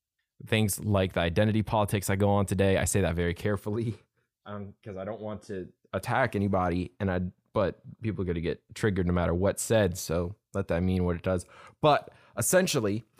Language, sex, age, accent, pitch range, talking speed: English, male, 20-39, American, 95-115 Hz, 200 wpm